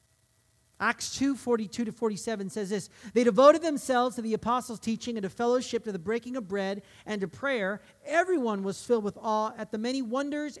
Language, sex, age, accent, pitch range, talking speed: English, male, 40-59, American, 210-270 Hz, 190 wpm